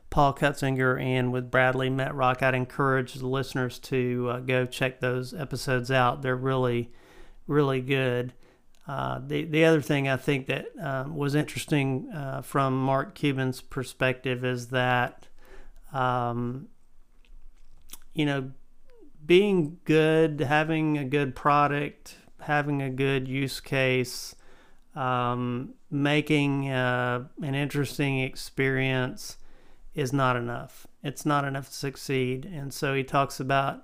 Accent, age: American, 40-59